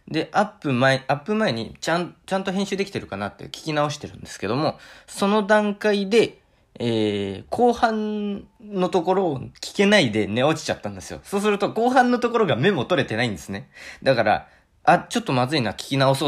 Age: 20-39